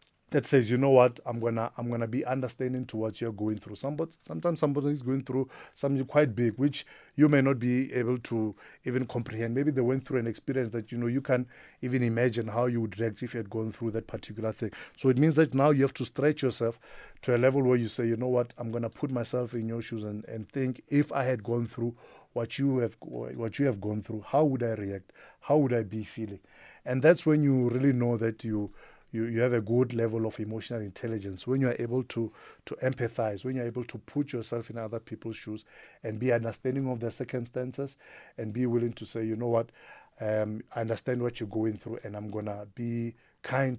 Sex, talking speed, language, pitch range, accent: male, 235 wpm, English, 110-130 Hz, South African